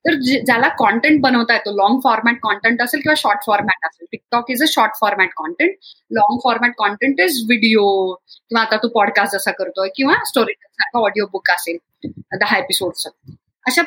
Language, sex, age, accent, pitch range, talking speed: Marathi, female, 30-49, native, 210-290 Hz, 175 wpm